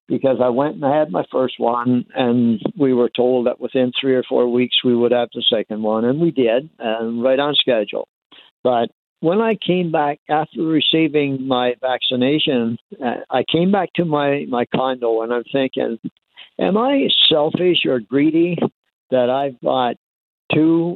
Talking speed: 175 wpm